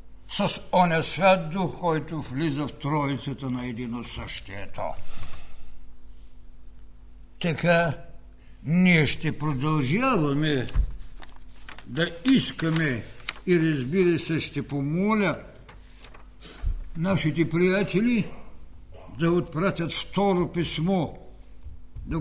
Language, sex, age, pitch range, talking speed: Bulgarian, male, 60-79, 145-180 Hz, 80 wpm